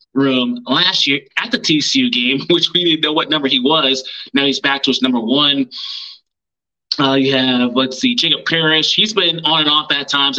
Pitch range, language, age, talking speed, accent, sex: 130-165 Hz, English, 20-39, 210 wpm, American, male